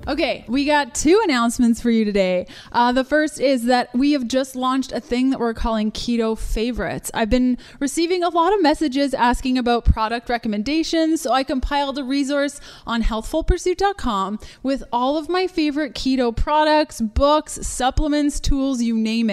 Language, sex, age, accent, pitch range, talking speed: English, female, 20-39, American, 225-285 Hz, 170 wpm